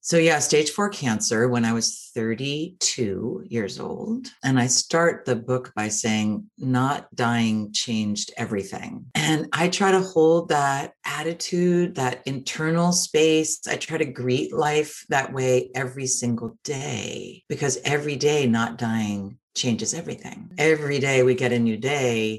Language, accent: English, American